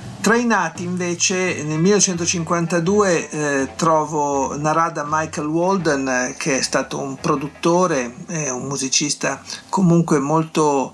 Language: Italian